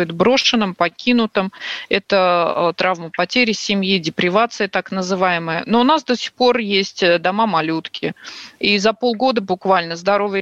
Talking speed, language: 130 wpm, Russian